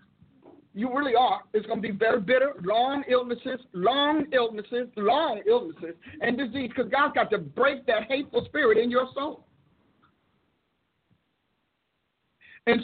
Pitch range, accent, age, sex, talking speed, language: 215-265 Hz, American, 50-69, male, 135 wpm, English